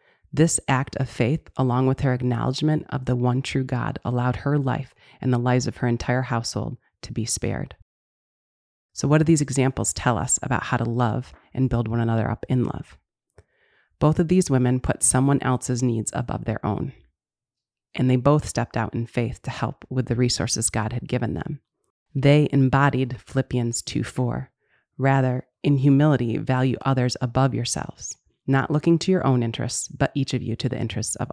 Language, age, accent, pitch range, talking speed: English, 30-49, American, 120-145 Hz, 185 wpm